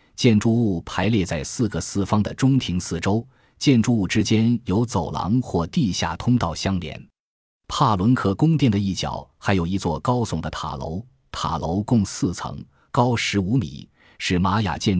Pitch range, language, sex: 85-115 Hz, Chinese, male